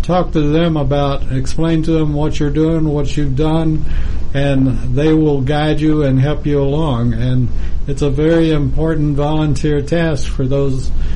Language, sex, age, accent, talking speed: English, male, 60-79, American, 165 wpm